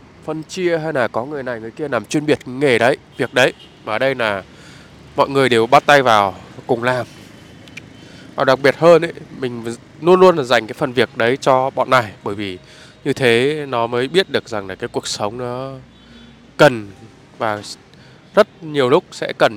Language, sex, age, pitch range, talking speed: Vietnamese, male, 20-39, 120-155 Hz, 200 wpm